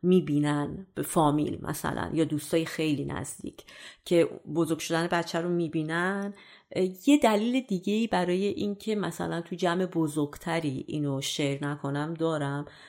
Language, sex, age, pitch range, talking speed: Persian, female, 30-49, 150-185 Hz, 145 wpm